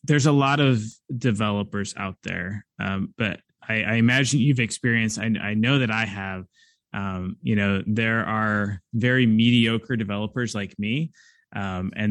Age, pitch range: 20-39, 105-135 Hz